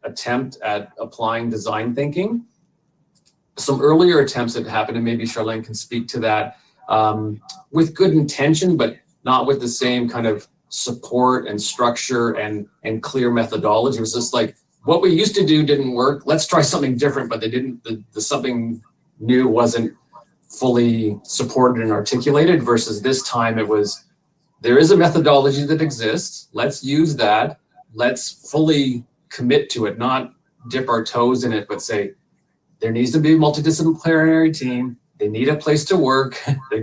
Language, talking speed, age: English, 170 wpm, 30-49